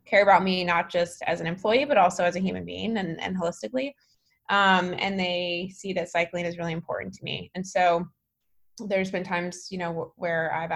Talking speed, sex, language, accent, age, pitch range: 205 wpm, female, English, American, 20-39, 170-195 Hz